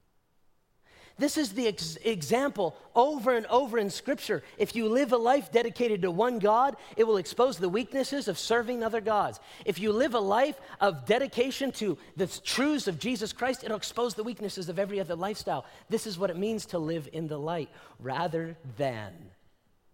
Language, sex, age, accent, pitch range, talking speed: English, male, 40-59, American, 130-220 Hz, 180 wpm